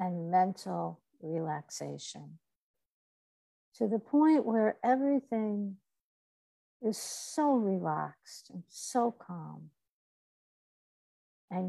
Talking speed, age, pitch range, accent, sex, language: 75 wpm, 60-79, 155-225 Hz, American, female, English